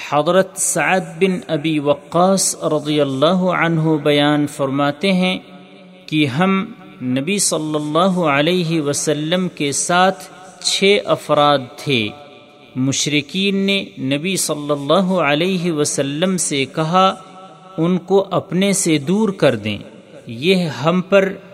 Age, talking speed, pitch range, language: 40-59, 115 wpm, 145-185 Hz, Urdu